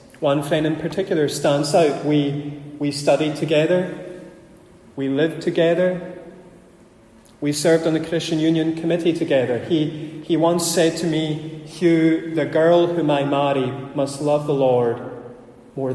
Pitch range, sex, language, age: 135-155 Hz, male, English, 30-49